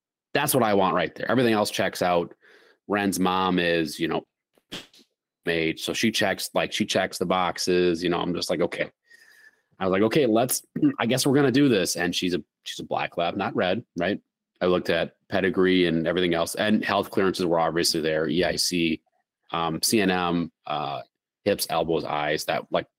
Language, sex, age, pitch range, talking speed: English, male, 30-49, 85-105 Hz, 195 wpm